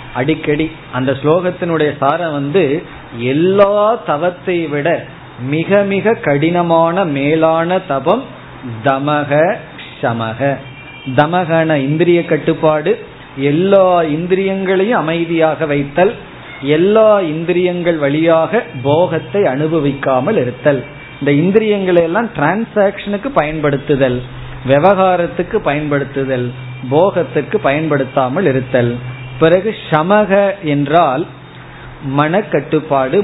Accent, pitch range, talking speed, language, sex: native, 135-180 Hz, 65 wpm, Tamil, male